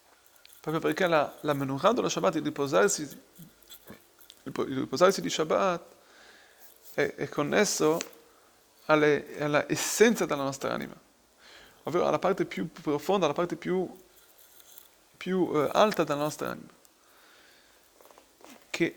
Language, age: Italian, 30-49